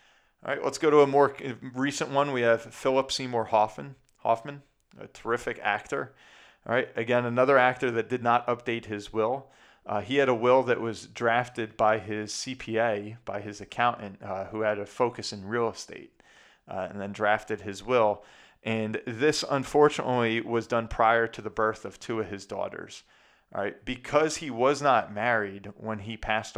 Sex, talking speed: male, 185 wpm